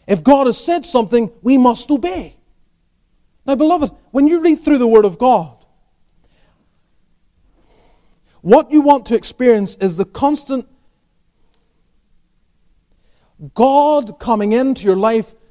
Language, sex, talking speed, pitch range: English, male, 120 wpm, 205-275 Hz